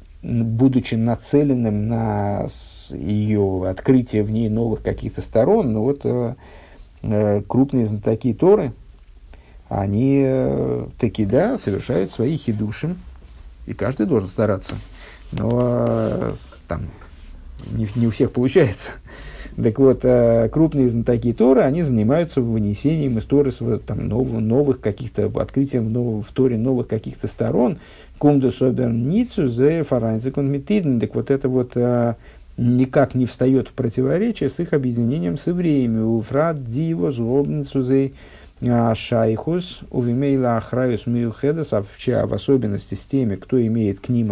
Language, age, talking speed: Russian, 50-69, 120 wpm